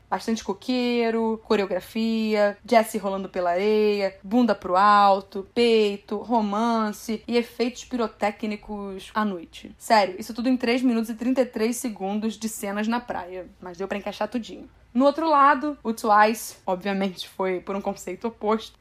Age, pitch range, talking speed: 20-39, 200-235 Hz, 145 wpm